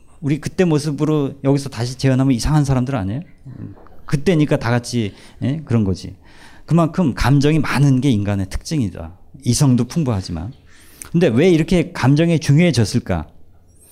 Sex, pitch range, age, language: male, 95-155 Hz, 40-59, Korean